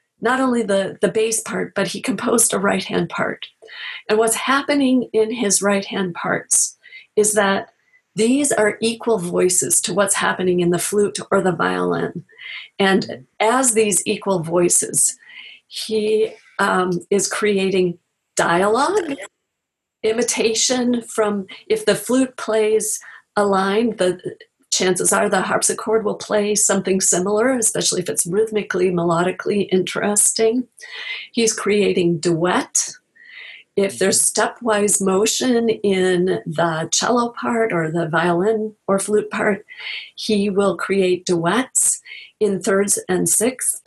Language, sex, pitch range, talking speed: English, female, 190-230 Hz, 125 wpm